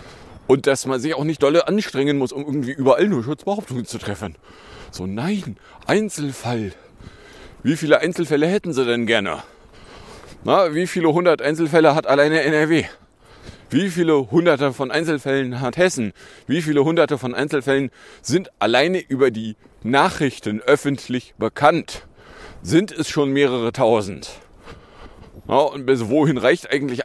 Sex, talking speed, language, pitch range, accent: male, 140 wpm, German, 120-160 Hz, German